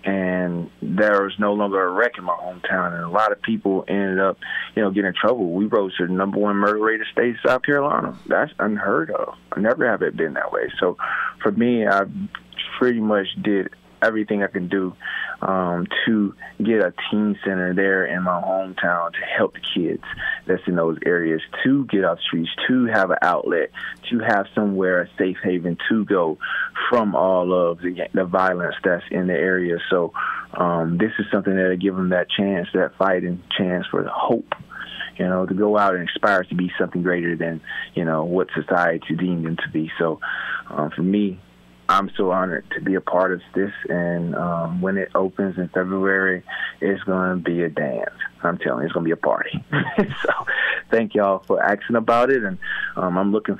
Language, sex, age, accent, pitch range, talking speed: English, male, 20-39, American, 90-105 Hz, 210 wpm